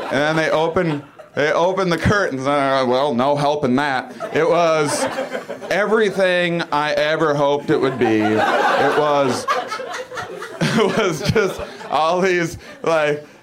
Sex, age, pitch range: male, 40-59, 145-225 Hz